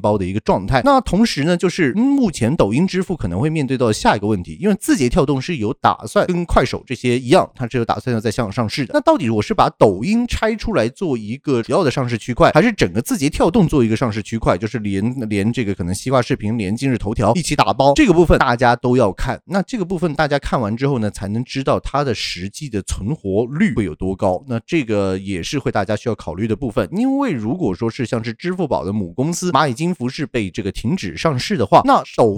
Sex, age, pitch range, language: male, 30-49, 110-170 Hz, Chinese